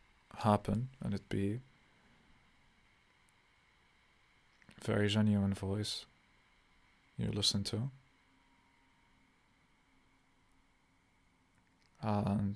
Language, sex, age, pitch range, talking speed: English, male, 20-39, 100-110 Hz, 55 wpm